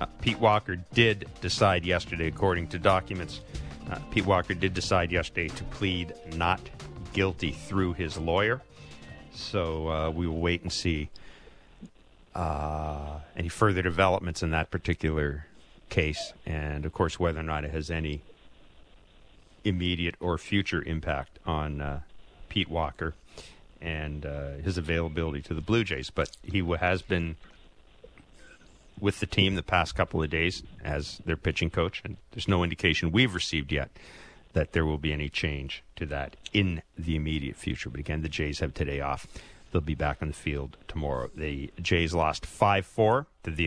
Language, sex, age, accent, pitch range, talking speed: English, male, 40-59, American, 75-95 Hz, 160 wpm